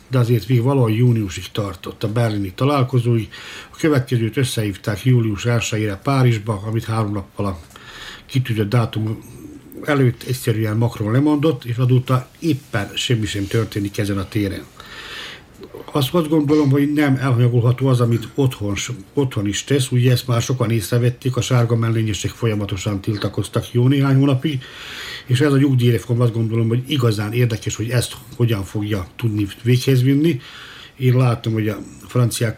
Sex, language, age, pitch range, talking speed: male, Hungarian, 60-79, 105-125 Hz, 145 wpm